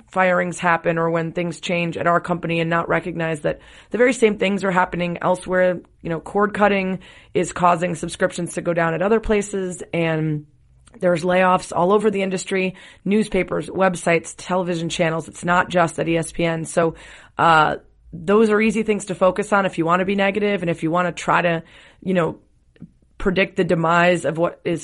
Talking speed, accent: 190 wpm, American